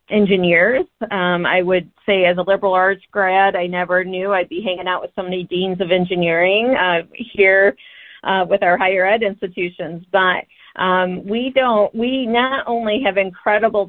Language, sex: English, female